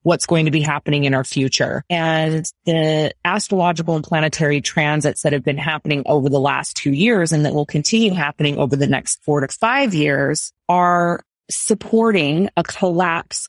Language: English